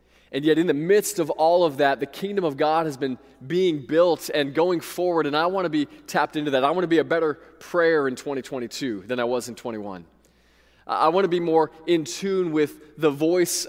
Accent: American